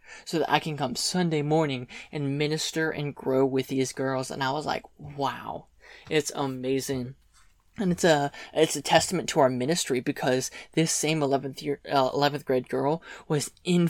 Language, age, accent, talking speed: English, 20-39, American, 175 wpm